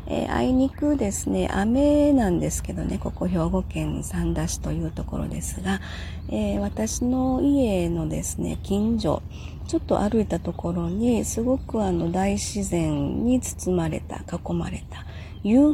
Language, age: Japanese, 40-59